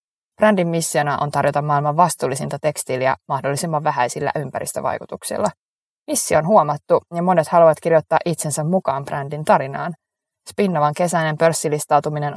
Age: 20-39